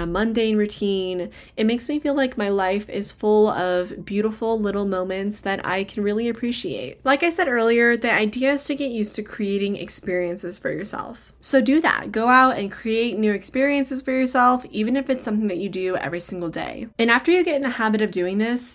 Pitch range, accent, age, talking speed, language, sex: 195-250 Hz, American, 20-39, 215 wpm, English, female